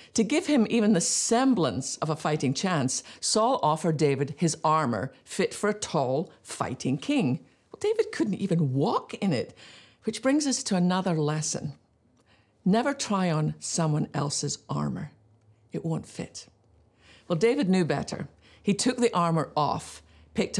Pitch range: 145-220 Hz